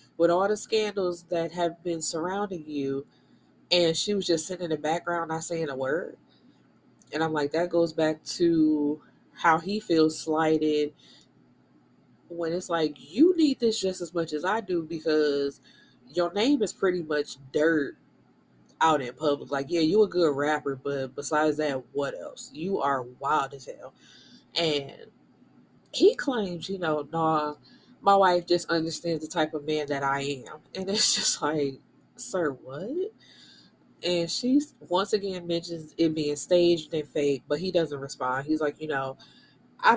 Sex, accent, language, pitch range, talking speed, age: female, American, English, 145-175 Hz, 170 wpm, 20-39